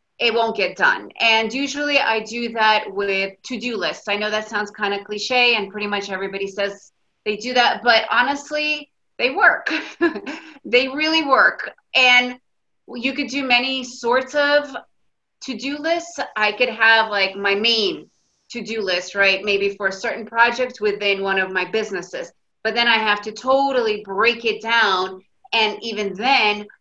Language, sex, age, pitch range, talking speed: English, female, 30-49, 200-245 Hz, 165 wpm